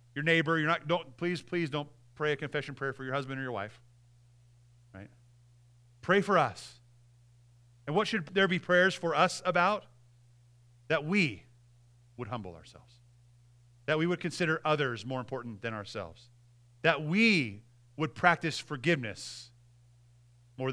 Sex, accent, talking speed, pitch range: male, American, 150 wpm, 120-170 Hz